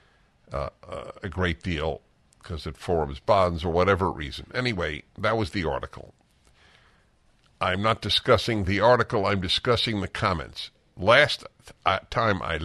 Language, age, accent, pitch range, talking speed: English, 60-79, American, 85-115 Hz, 140 wpm